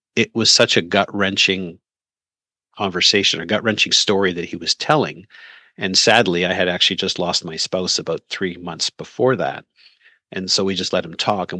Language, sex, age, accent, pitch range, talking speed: English, male, 40-59, American, 90-115 Hz, 180 wpm